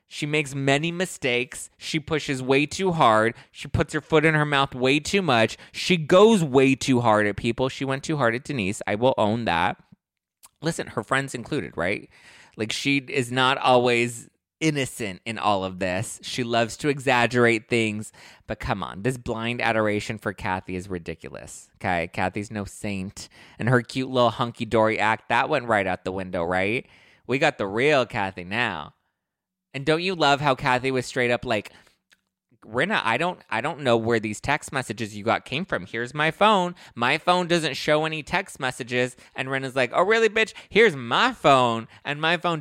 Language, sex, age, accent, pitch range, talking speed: English, male, 20-39, American, 110-145 Hz, 190 wpm